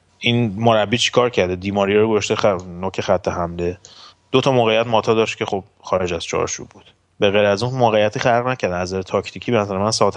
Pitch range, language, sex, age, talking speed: 95-115 Hz, Persian, male, 30-49, 190 wpm